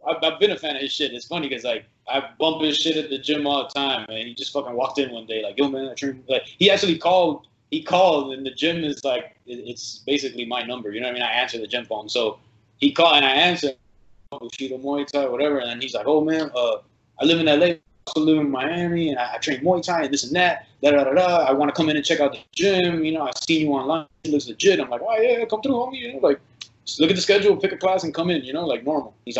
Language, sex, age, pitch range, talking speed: English, male, 20-39, 135-175 Hz, 300 wpm